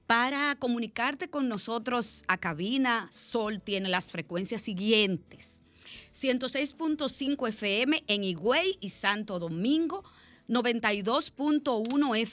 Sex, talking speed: female, 90 wpm